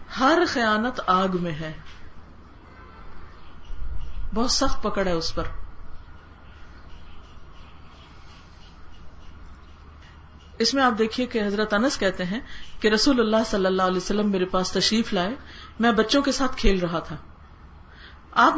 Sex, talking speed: female, 125 wpm